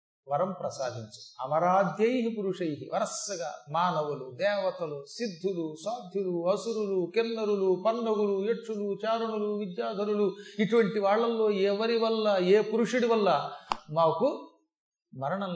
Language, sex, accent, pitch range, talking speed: Telugu, male, native, 165-220 Hz, 95 wpm